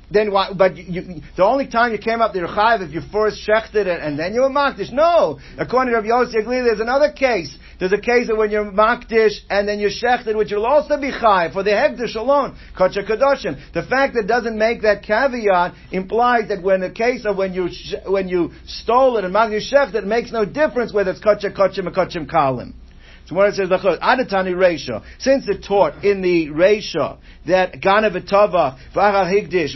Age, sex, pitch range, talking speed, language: 60-79, male, 185-230 Hz, 215 wpm, English